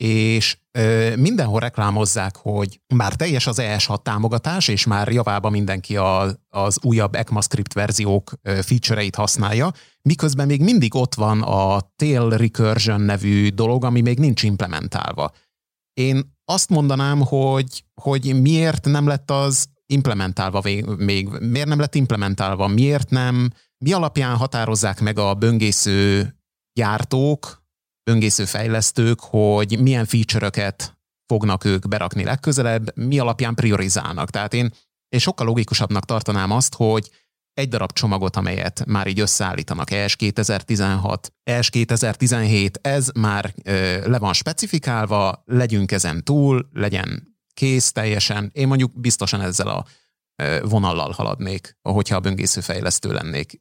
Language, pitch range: Hungarian, 100-130 Hz